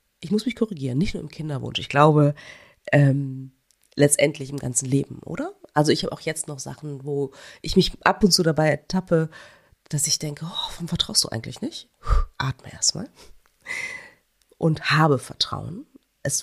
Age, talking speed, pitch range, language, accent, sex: 30-49, 170 wpm, 135-180 Hz, German, German, female